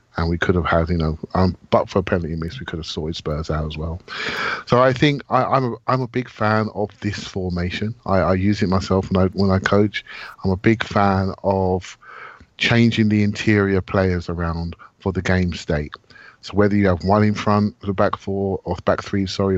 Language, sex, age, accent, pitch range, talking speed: English, male, 30-49, British, 90-110 Hz, 220 wpm